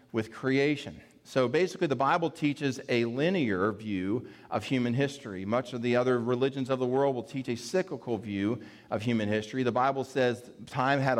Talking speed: 180 wpm